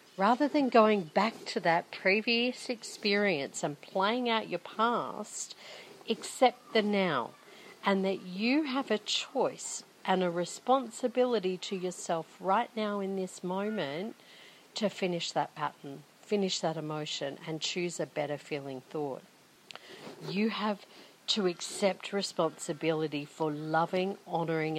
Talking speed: 130 wpm